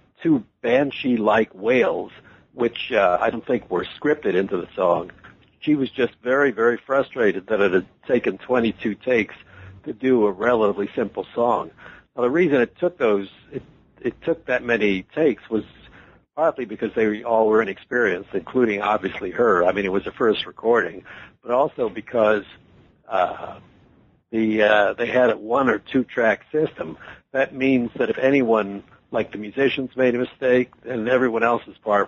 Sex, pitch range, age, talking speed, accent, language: male, 110-130 Hz, 60-79, 165 wpm, American, English